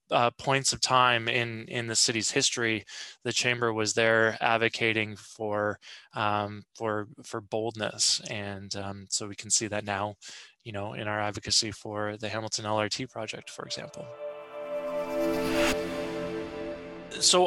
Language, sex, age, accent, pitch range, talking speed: English, male, 20-39, American, 105-120 Hz, 130 wpm